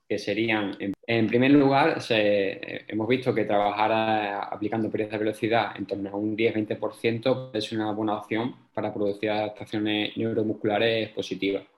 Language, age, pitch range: Spanish, 20-39, 100-110 Hz